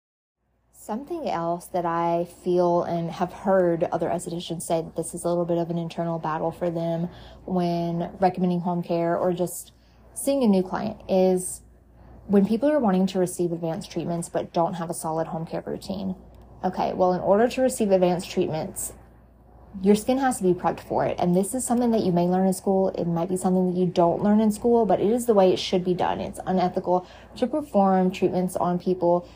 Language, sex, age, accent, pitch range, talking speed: English, female, 20-39, American, 175-200 Hz, 210 wpm